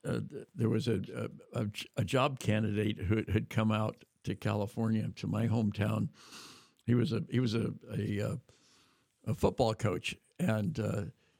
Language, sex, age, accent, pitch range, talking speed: English, male, 60-79, American, 110-135 Hz, 155 wpm